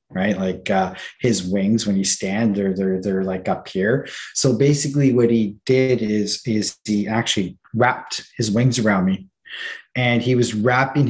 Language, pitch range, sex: English, 110-140 Hz, male